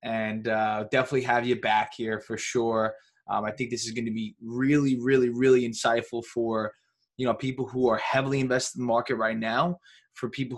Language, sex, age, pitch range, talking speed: English, male, 20-39, 115-130 Hz, 205 wpm